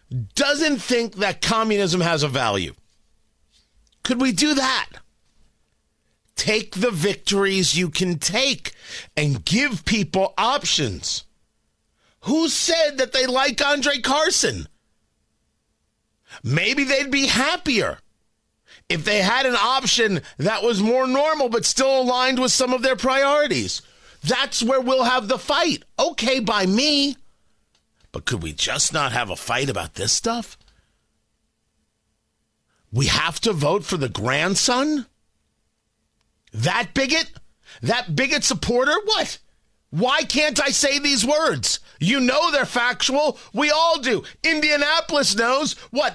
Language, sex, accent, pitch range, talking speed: English, male, American, 210-280 Hz, 125 wpm